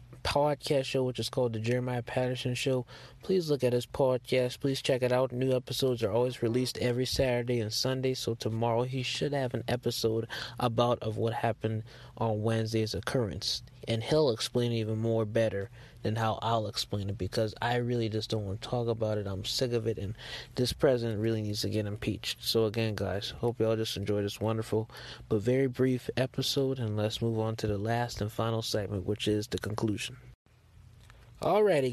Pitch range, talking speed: 110-130 Hz, 195 wpm